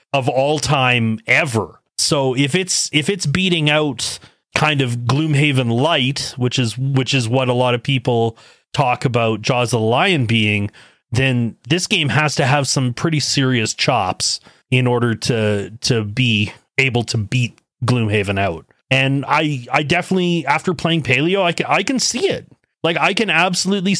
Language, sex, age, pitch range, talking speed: English, male, 30-49, 125-170 Hz, 170 wpm